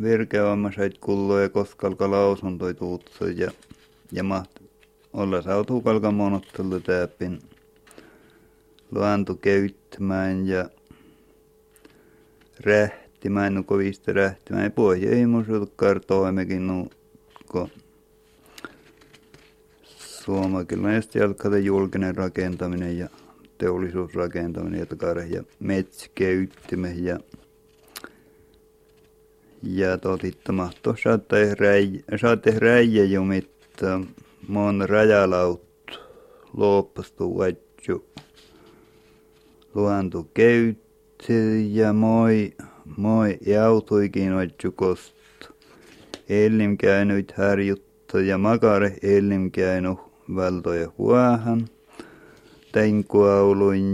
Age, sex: 50-69, male